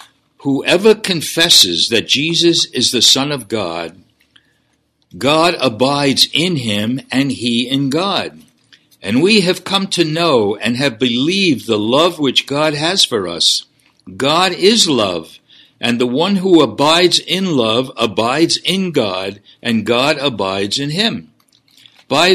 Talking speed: 140 wpm